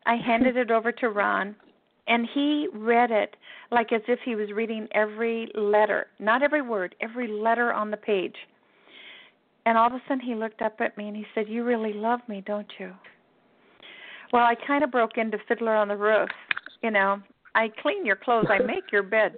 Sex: female